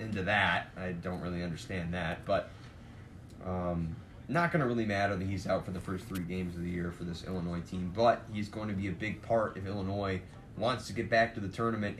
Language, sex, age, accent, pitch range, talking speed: English, male, 20-39, American, 95-120 Hz, 240 wpm